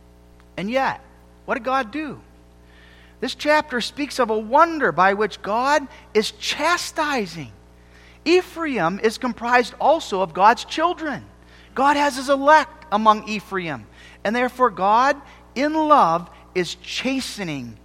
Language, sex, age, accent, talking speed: English, male, 40-59, American, 125 wpm